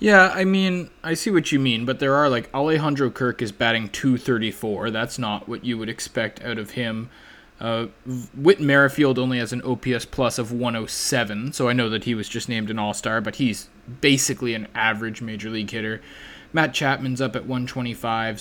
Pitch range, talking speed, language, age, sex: 110-135 Hz, 210 wpm, English, 20-39, male